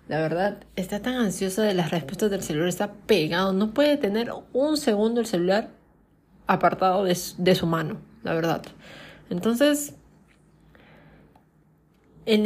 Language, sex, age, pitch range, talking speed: Spanish, female, 30-49, 175-220 Hz, 140 wpm